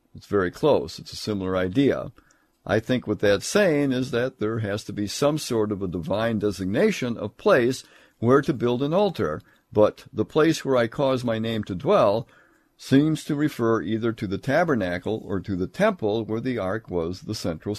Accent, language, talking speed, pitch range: American, English, 195 wpm, 100-130 Hz